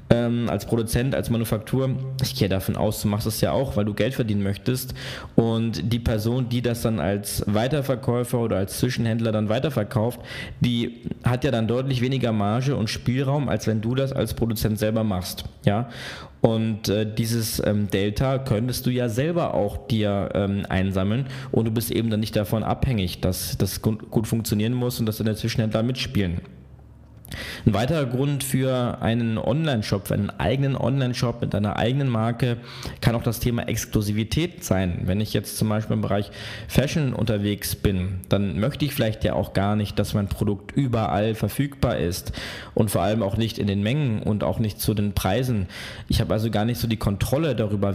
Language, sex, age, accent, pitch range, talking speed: German, male, 20-39, German, 105-125 Hz, 180 wpm